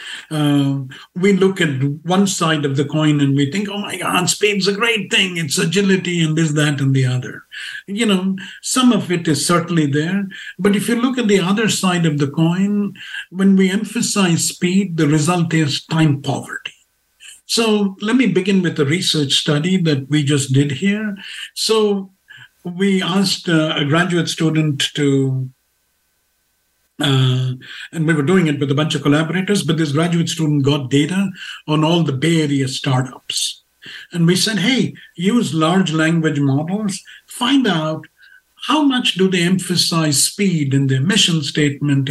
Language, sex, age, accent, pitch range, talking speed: English, male, 50-69, Indian, 145-195 Hz, 170 wpm